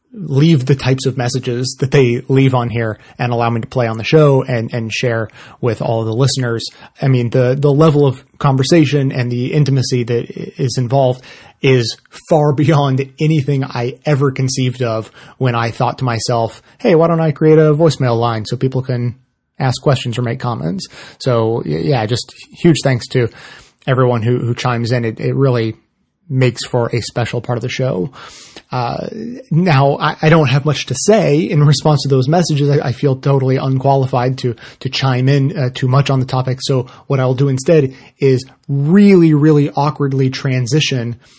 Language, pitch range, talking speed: English, 125-150 Hz, 185 wpm